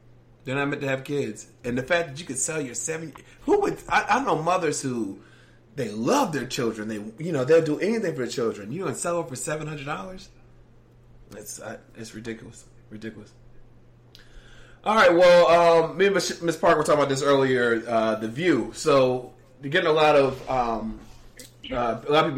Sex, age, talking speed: male, 20-39, 190 wpm